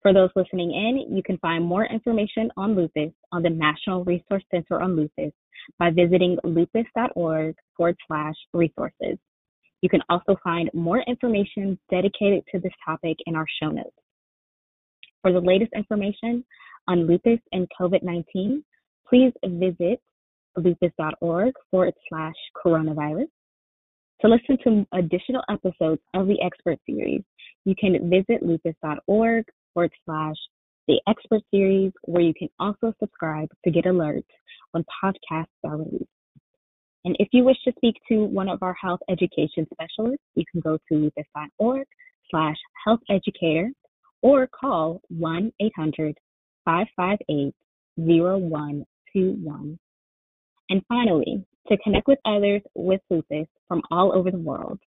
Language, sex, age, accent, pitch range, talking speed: English, female, 20-39, American, 165-210 Hz, 130 wpm